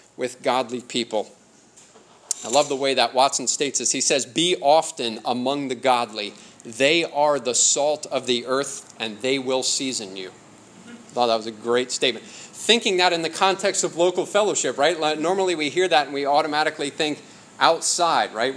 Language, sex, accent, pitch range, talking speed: English, male, American, 120-150 Hz, 180 wpm